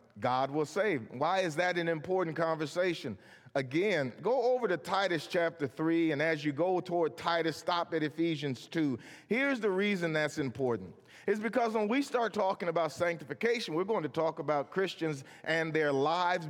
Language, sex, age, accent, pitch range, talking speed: English, male, 40-59, American, 145-205 Hz, 175 wpm